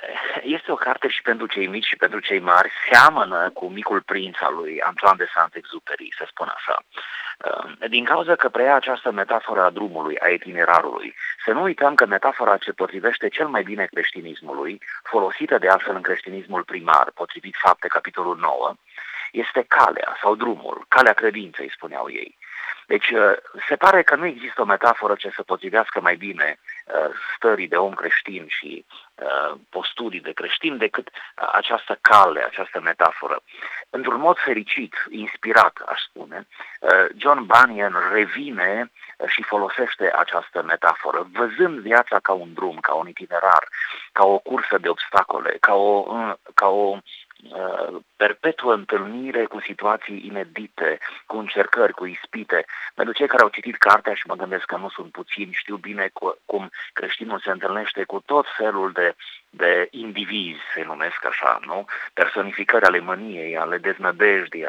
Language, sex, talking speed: Romanian, male, 150 wpm